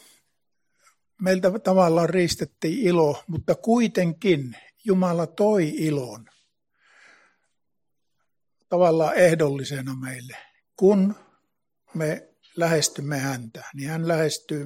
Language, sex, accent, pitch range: Finnish, male, native, 145-180 Hz